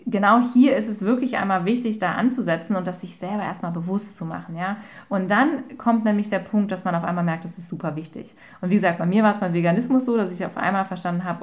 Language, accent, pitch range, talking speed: German, German, 175-220 Hz, 255 wpm